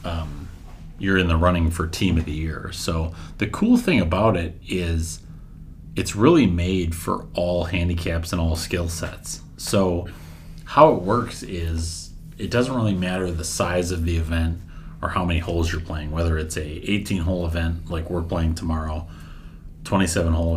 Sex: male